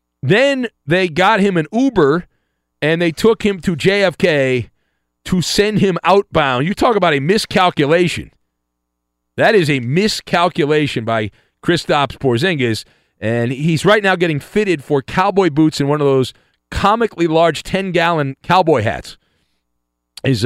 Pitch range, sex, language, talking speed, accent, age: 120-180 Hz, male, English, 140 wpm, American, 40-59